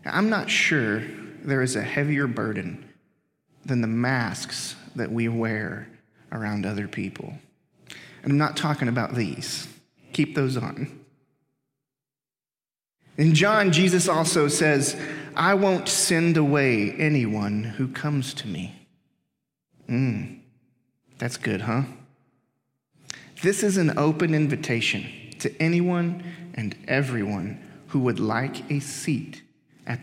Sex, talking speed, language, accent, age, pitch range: male, 120 wpm, English, American, 30-49, 125-155 Hz